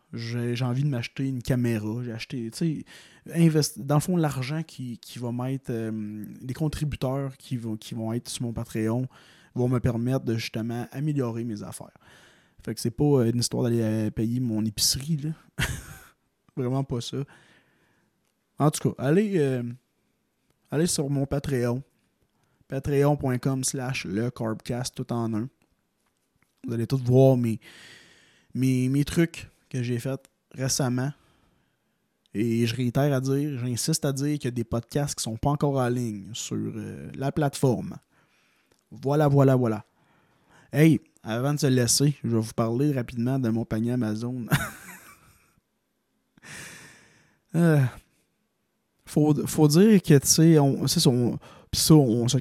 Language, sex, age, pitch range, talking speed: French, male, 20-39, 120-145 Hz, 150 wpm